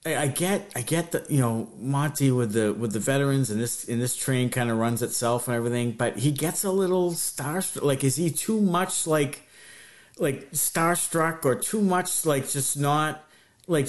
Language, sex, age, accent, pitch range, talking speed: English, male, 50-69, American, 130-170 Hz, 195 wpm